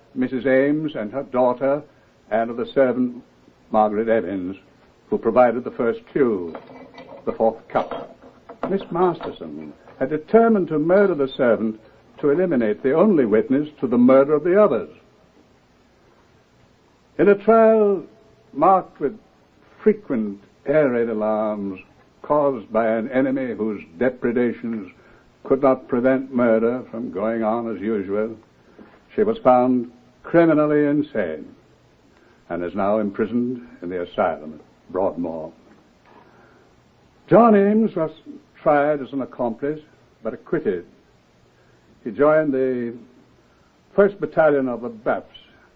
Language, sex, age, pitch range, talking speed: English, male, 60-79, 110-160 Hz, 120 wpm